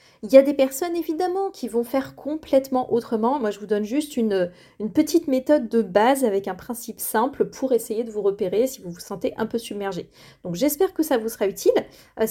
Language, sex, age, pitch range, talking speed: French, female, 30-49, 210-270 Hz, 225 wpm